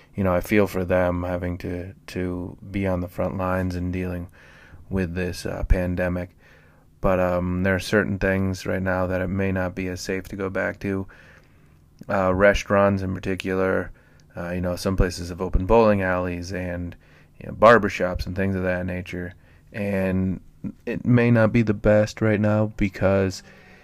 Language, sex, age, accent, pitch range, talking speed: English, male, 30-49, American, 90-100 Hz, 180 wpm